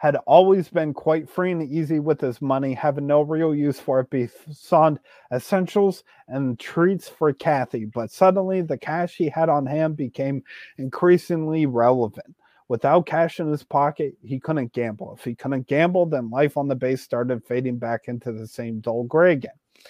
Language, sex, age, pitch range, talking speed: English, male, 30-49, 130-165 Hz, 180 wpm